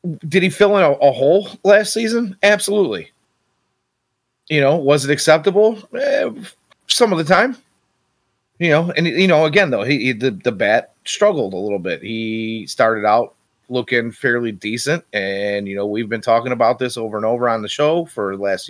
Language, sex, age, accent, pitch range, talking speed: English, male, 30-49, American, 100-125 Hz, 185 wpm